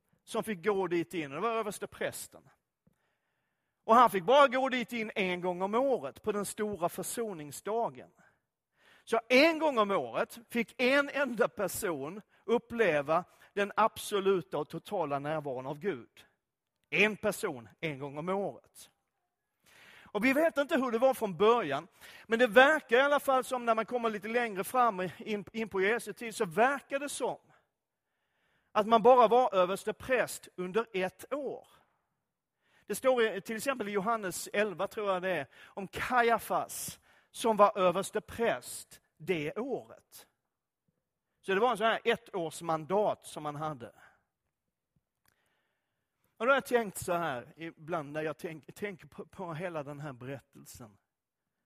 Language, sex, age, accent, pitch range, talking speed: Swedish, male, 40-59, native, 170-230 Hz, 155 wpm